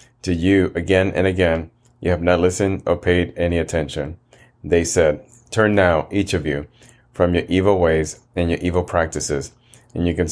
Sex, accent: male, American